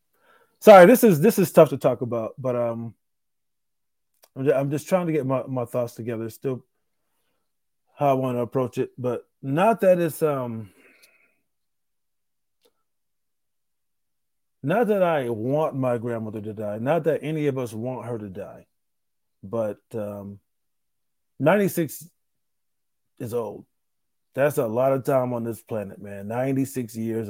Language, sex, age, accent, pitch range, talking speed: English, male, 30-49, American, 115-150 Hz, 145 wpm